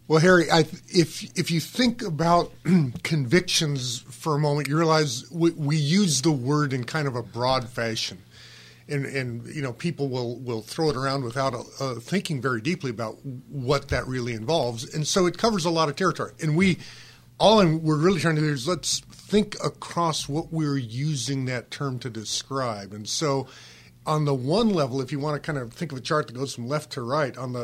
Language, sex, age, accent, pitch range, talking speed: English, male, 50-69, American, 125-160 Hz, 205 wpm